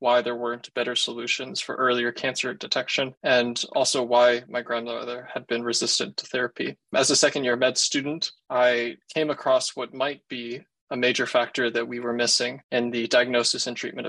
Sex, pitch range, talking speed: male, 120-135 Hz, 185 wpm